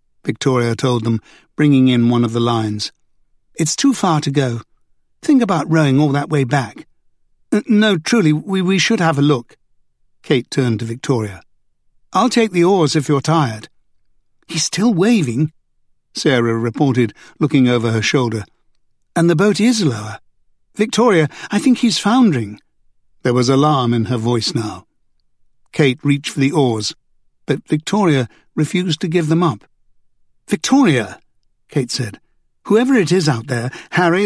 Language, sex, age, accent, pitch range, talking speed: English, male, 60-79, British, 125-165 Hz, 155 wpm